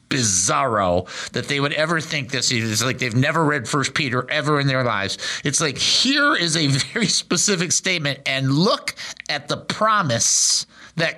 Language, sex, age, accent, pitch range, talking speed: English, male, 50-69, American, 145-195 Hz, 175 wpm